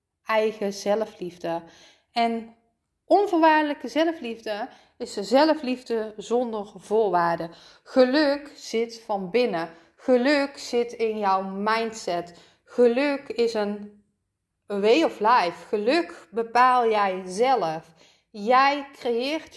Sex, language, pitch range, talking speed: female, Dutch, 205-270 Hz, 90 wpm